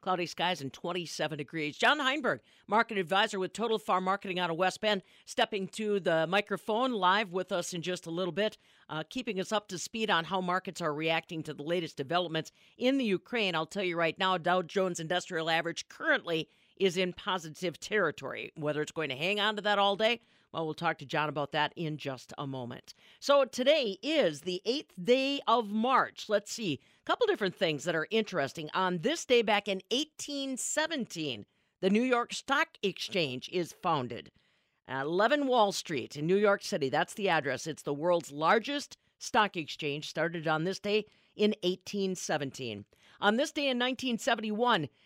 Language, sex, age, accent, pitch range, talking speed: English, female, 50-69, American, 165-225 Hz, 185 wpm